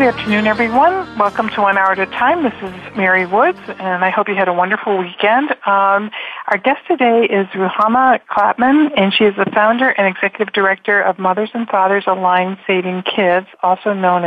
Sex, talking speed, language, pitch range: female, 195 wpm, English, 185-215 Hz